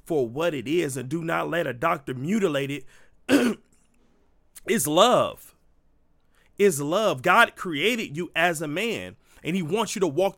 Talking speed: 160 wpm